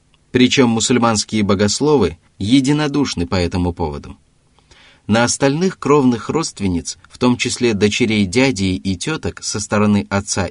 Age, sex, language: 30-49, male, Russian